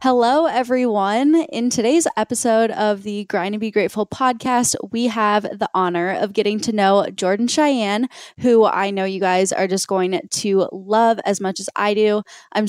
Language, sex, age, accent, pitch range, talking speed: English, female, 20-39, American, 195-230 Hz, 180 wpm